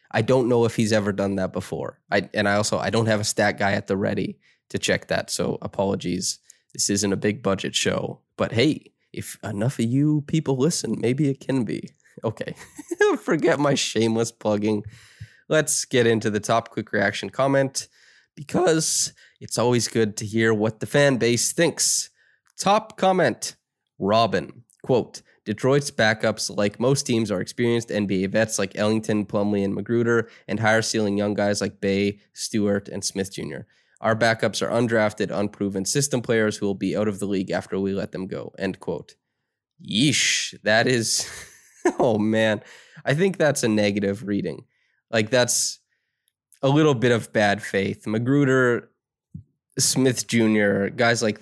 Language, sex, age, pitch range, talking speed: English, male, 20-39, 100-130 Hz, 165 wpm